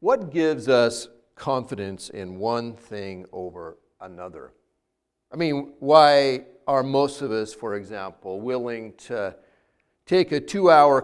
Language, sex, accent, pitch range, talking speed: English, male, American, 120-185 Hz, 125 wpm